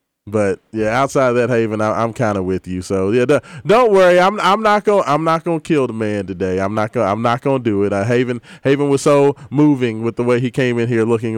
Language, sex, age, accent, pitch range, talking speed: English, male, 20-39, American, 115-150 Hz, 275 wpm